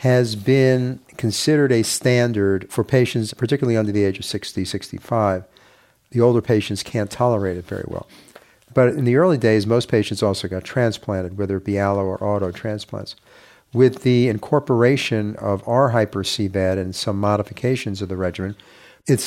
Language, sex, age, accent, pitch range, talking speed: English, male, 50-69, American, 100-125 Hz, 160 wpm